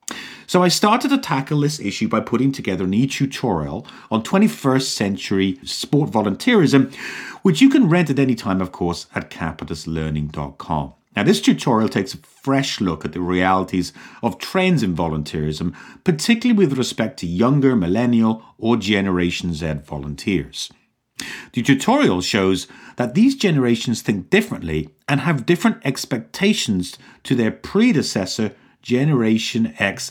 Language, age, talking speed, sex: English, 40-59, 140 wpm, male